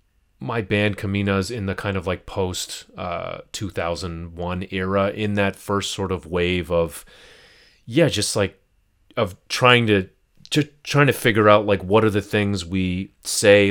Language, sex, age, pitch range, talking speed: English, male, 30-49, 85-105 Hz, 160 wpm